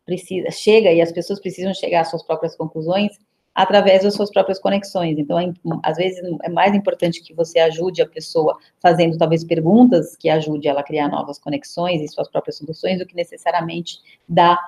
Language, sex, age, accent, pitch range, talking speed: Portuguese, female, 30-49, Brazilian, 165-195 Hz, 190 wpm